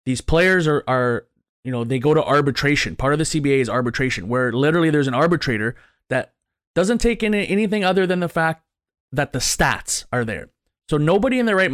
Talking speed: 205 wpm